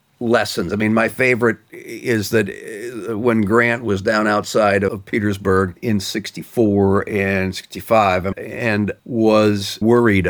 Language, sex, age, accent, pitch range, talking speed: English, male, 50-69, American, 100-140 Hz, 120 wpm